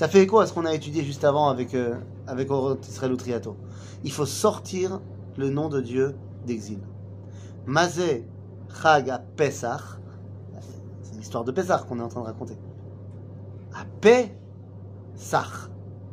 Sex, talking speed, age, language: male, 145 wpm, 30-49, French